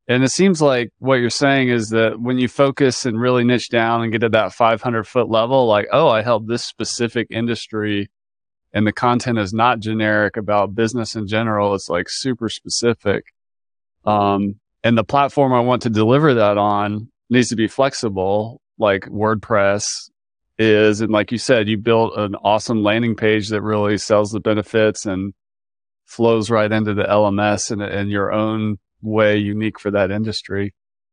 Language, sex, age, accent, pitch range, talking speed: English, male, 30-49, American, 105-120 Hz, 175 wpm